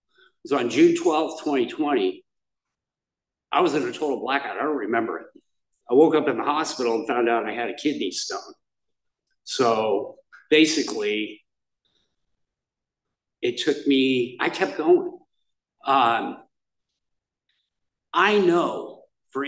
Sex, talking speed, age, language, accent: male, 125 wpm, 50-69, English, American